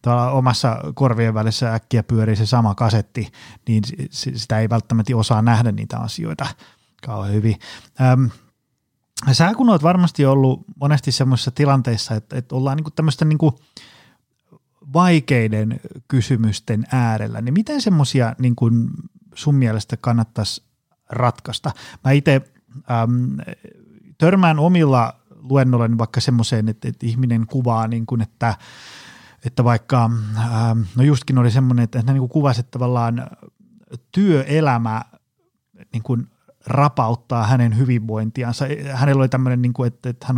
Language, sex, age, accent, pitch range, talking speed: Finnish, male, 30-49, native, 115-140 Hz, 120 wpm